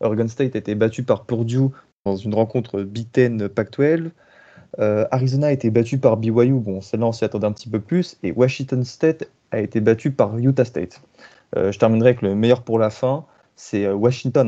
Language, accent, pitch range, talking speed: French, French, 110-130 Hz, 200 wpm